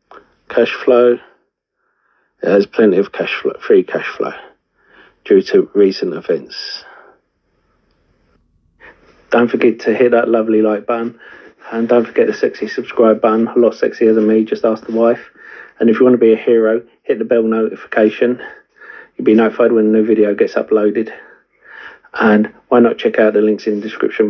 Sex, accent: male, British